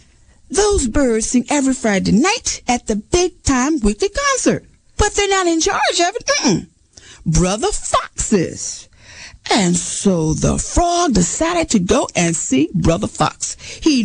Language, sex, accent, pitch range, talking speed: English, female, American, 225-335 Hz, 140 wpm